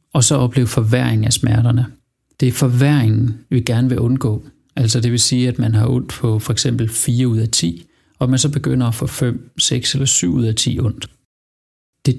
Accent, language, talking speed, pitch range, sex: native, Danish, 210 wpm, 120-140 Hz, male